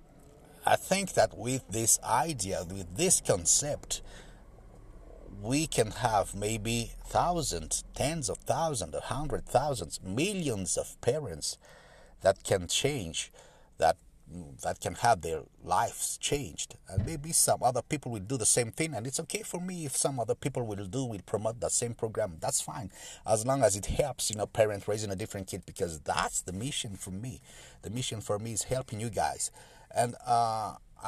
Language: English